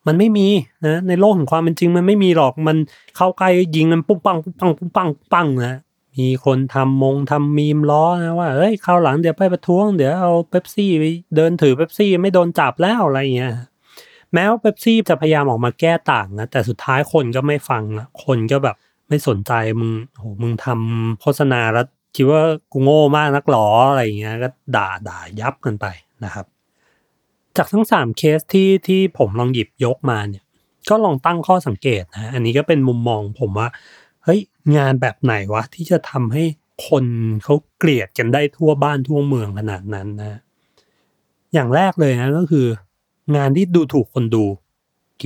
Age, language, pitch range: 30-49, Thai, 125-175 Hz